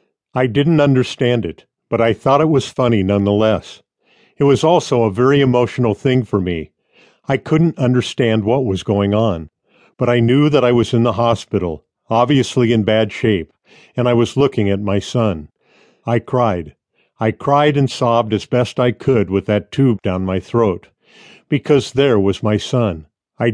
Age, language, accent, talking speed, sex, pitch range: 50-69, English, American, 175 wpm, male, 105-130 Hz